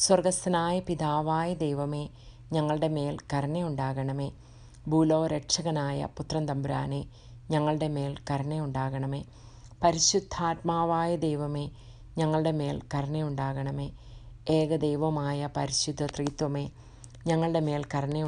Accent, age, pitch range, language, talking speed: Indian, 30-49, 135-160 Hz, English, 100 wpm